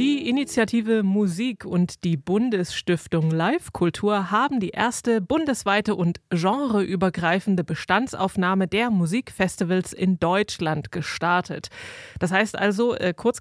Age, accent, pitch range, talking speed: 30-49, German, 175-225 Hz, 105 wpm